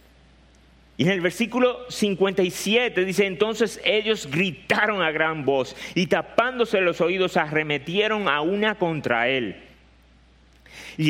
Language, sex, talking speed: Spanish, male, 120 wpm